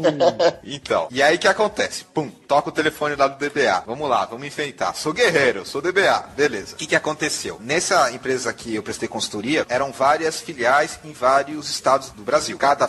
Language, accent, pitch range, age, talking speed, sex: English, Brazilian, 135-180 Hz, 30-49, 185 wpm, male